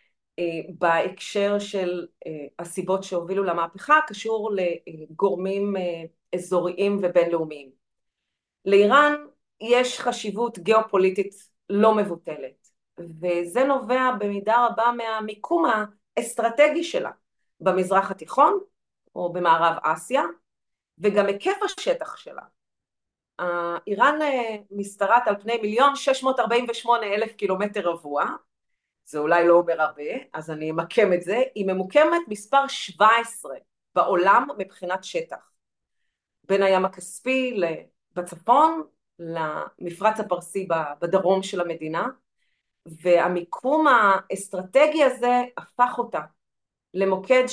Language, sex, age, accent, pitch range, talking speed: Hebrew, female, 30-49, native, 175-245 Hz, 90 wpm